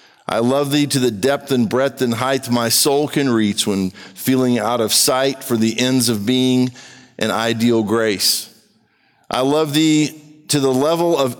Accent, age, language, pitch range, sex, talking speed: American, 50-69, English, 115-145 Hz, male, 180 wpm